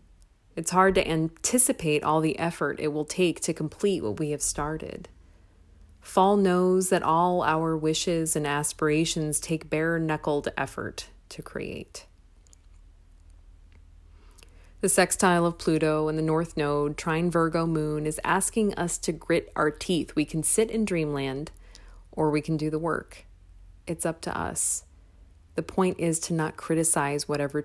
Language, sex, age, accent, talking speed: English, female, 30-49, American, 150 wpm